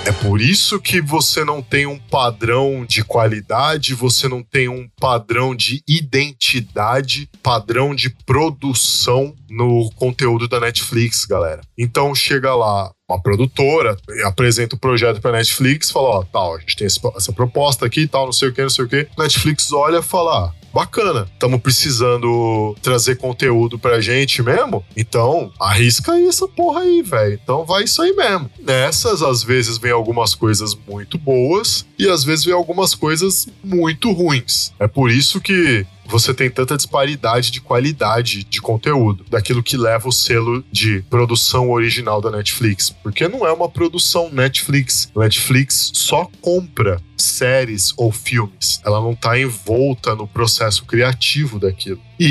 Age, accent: 20-39, Brazilian